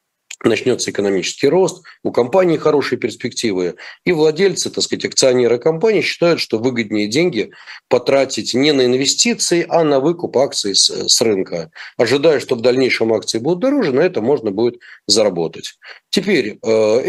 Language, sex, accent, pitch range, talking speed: Russian, male, native, 120-180 Hz, 140 wpm